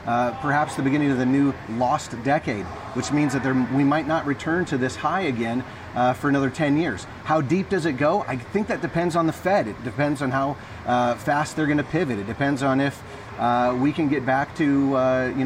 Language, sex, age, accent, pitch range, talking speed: English, male, 40-59, American, 125-155 Hz, 230 wpm